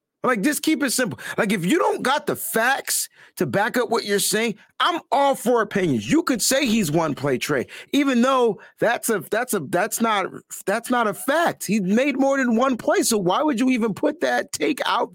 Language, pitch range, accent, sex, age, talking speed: English, 160-245 Hz, American, male, 30-49, 220 wpm